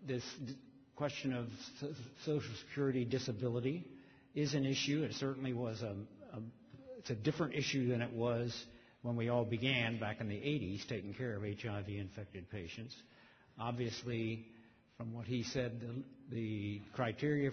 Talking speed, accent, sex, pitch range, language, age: 145 wpm, American, male, 115-135 Hz, English, 60-79